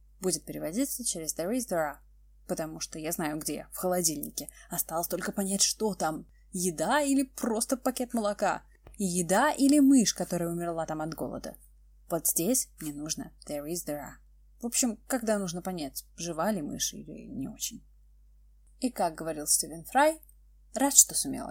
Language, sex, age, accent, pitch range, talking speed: Russian, female, 20-39, native, 150-230 Hz, 165 wpm